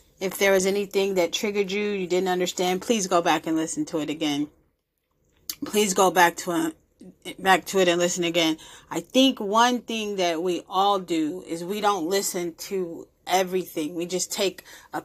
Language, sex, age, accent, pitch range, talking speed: English, female, 30-49, American, 175-200 Hz, 185 wpm